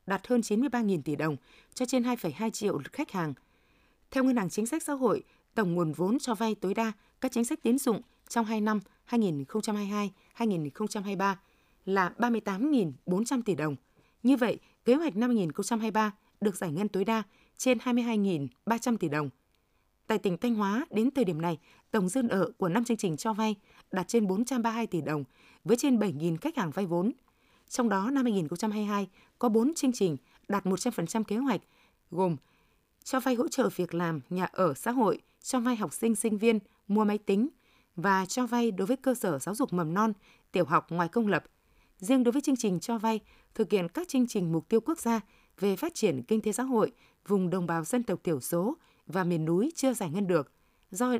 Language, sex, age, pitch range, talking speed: Vietnamese, female, 20-39, 185-245 Hz, 195 wpm